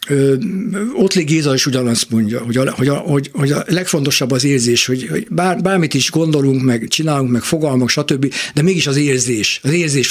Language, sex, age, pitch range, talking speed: Hungarian, male, 60-79, 130-160 Hz, 190 wpm